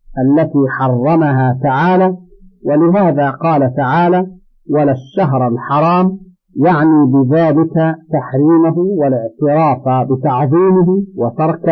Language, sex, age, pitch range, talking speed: Arabic, male, 50-69, 145-180 Hz, 75 wpm